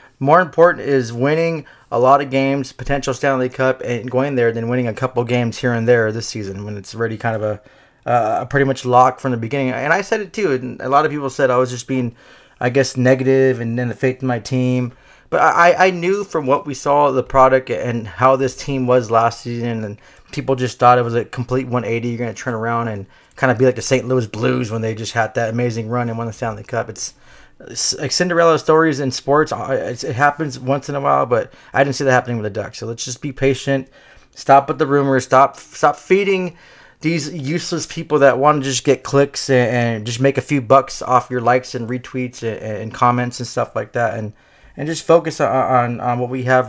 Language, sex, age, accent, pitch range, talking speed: English, male, 20-39, American, 120-140 Hz, 235 wpm